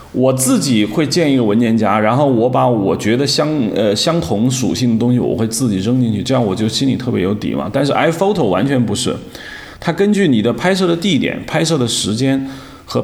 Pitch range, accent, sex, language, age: 105-135 Hz, native, male, Chinese, 30-49